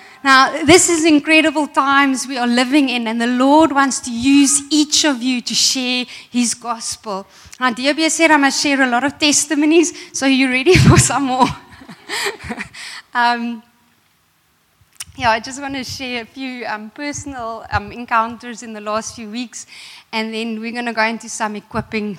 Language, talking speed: English, 180 wpm